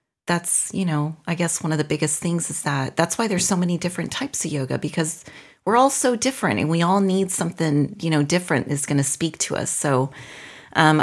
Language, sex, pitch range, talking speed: English, female, 135-165 Hz, 230 wpm